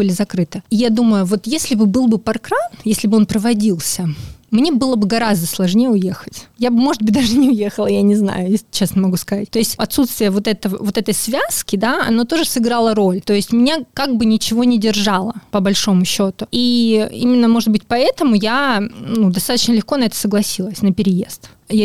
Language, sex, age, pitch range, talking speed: Russian, female, 20-39, 205-240 Hz, 190 wpm